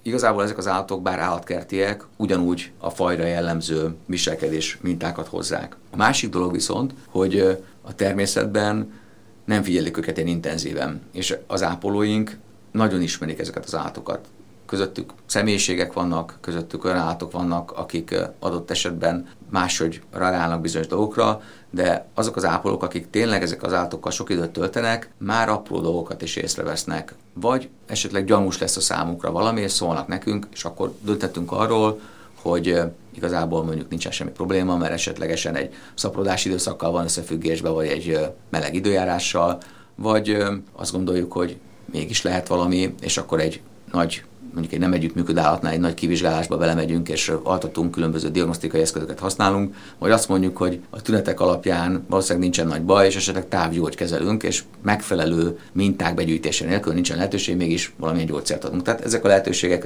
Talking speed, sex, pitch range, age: 150 wpm, male, 85-100 Hz, 50-69